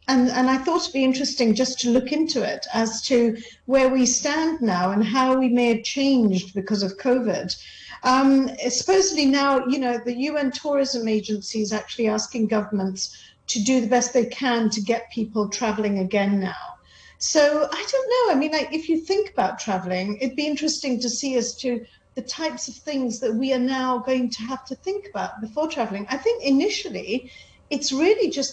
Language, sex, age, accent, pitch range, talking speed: English, female, 40-59, British, 225-285 Hz, 195 wpm